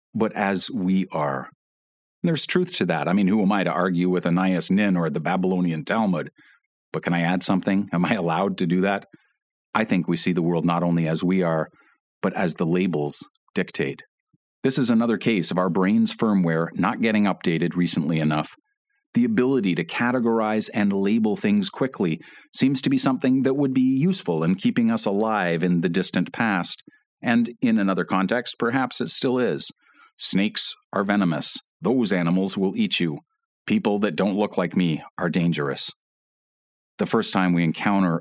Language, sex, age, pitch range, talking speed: English, male, 40-59, 85-135 Hz, 180 wpm